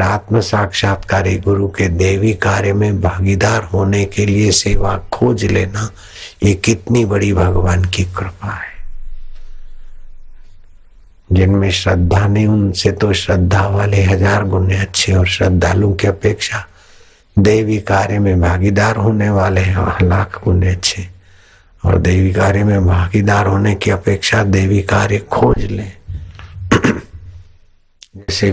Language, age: Hindi, 60-79